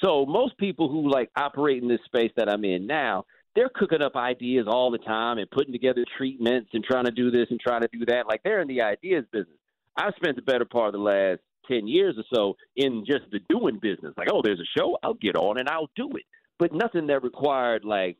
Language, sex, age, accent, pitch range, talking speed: English, male, 50-69, American, 120-170 Hz, 245 wpm